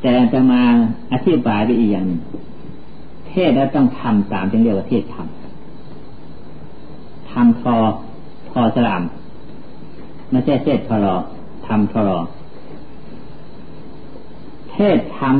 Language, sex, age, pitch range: Thai, male, 60-79, 105-135 Hz